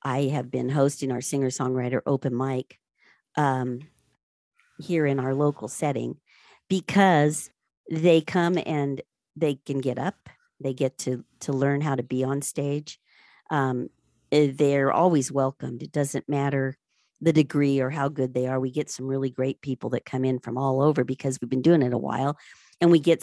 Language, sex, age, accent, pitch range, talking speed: English, female, 50-69, American, 130-165 Hz, 175 wpm